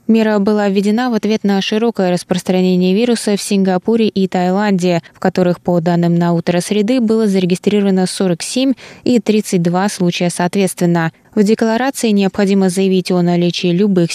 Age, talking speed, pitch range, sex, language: 20-39, 145 wpm, 180-215 Hz, female, Russian